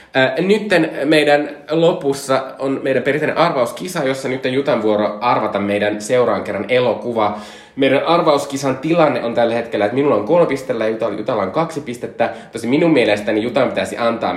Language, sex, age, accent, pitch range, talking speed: Finnish, male, 20-39, native, 105-140 Hz, 155 wpm